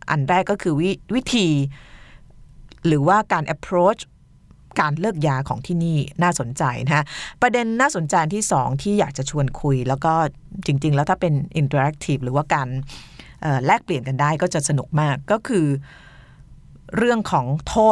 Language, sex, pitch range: Thai, female, 140-180 Hz